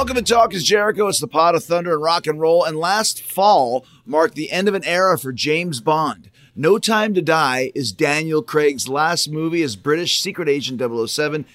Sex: male